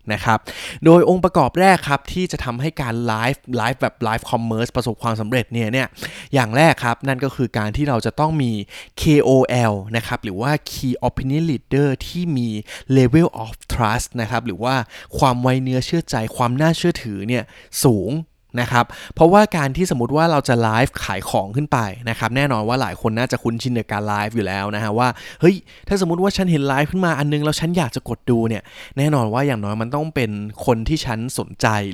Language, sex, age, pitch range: Thai, male, 20-39, 115-145 Hz